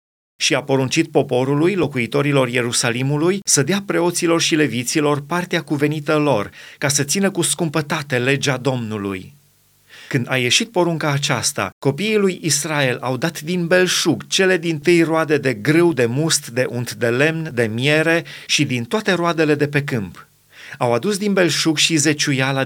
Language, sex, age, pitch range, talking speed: Romanian, male, 30-49, 130-165 Hz, 160 wpm